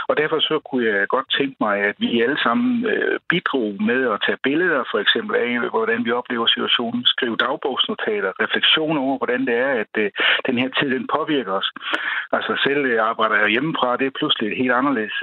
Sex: male